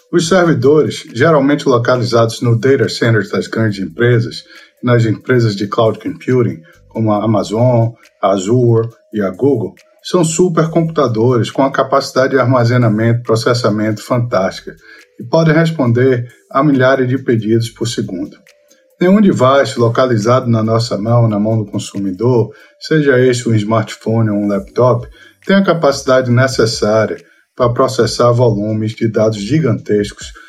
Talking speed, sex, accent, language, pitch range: 135 wpm, male, Brazilian, Portuguese, 110-145 Hz